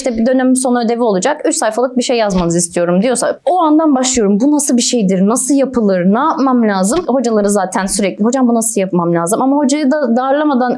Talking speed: 205 wpm